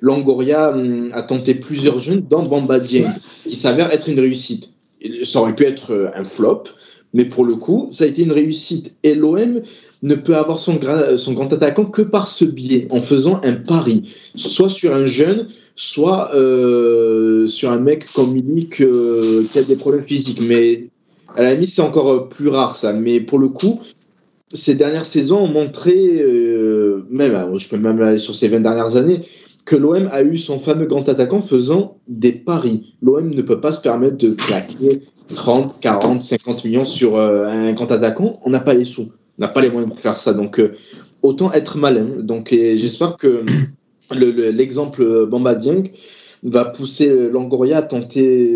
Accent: French